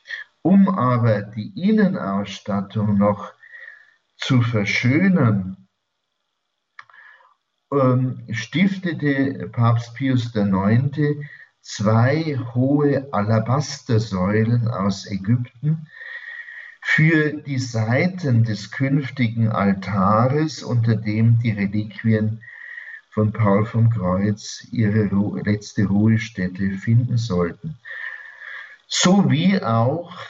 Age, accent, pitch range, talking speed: 50-69, German, 100-140 Hz, 75 wpm